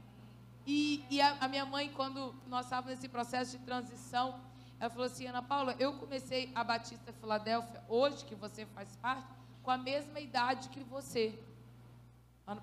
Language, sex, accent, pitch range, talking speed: Portuguese, female, Brazilian, 225-290 Hz, 165 wpm